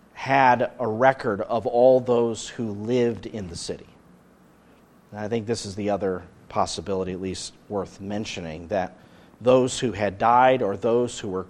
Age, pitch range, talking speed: 40-59, 105-135 Hz, 165 wpm